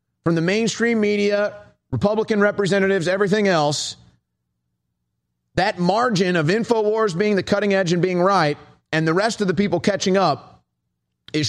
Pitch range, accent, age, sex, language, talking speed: 130-195 Hz, American, 30-49, male, English, 145 wpm